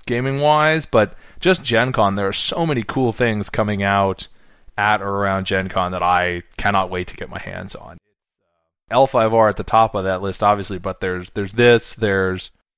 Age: 20-39